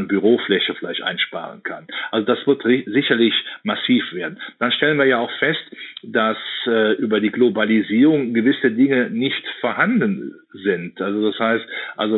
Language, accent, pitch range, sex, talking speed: German, German, 105-120 Hz, male, 155 wpm